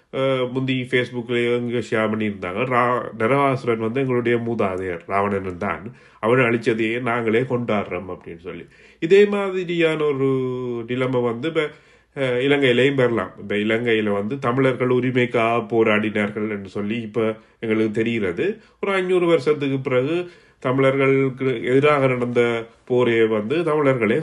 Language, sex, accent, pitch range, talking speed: Tamil, male, native, 115-140 Hz, 110 wpm